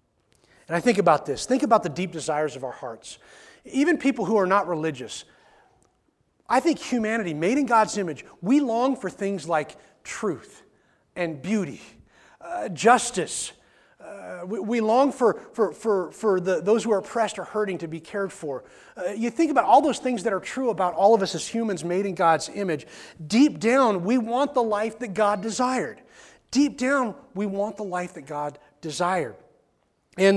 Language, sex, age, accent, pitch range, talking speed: English, male, 30-49, American, 165-225 Hz, 180 wpm